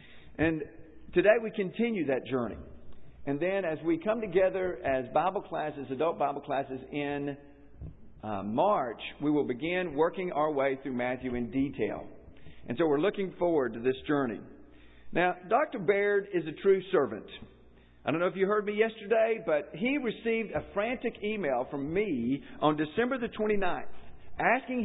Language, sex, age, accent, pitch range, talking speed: English, male, 50-69, American, 130-195 Hz, 160 wpm